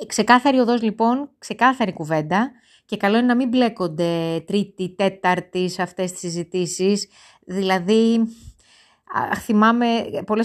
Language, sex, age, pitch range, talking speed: Greek, female, 20-39, 180-255 Hz, 120 wpm